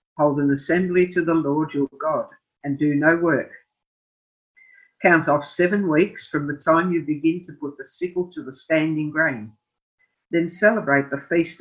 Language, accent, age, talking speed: English, Australian, 50-69, 170 wpm